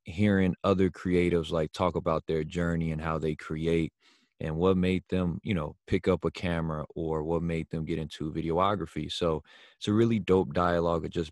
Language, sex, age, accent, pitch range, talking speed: English, male, 20-39, American, 80-90 Hz, 190 wpm